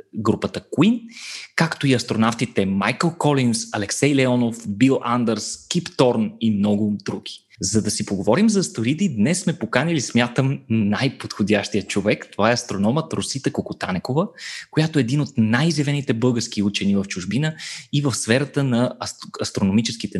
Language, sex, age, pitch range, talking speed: Bulgarian, male, 20-39, 105-140 Hz, 140 wpm